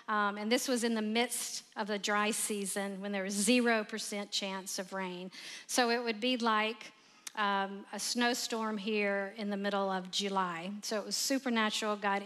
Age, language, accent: 40-59, English, American